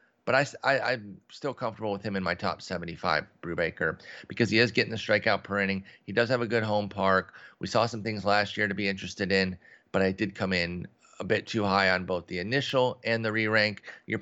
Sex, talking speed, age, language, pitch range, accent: male, 230 wpm, 30-49, English, 95-120 Hz, American